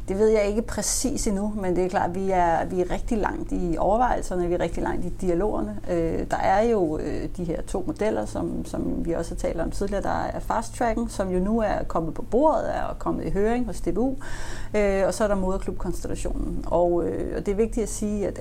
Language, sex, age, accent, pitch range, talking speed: Danish, female, 30-49, native, 175-215 Hz, 240 wpm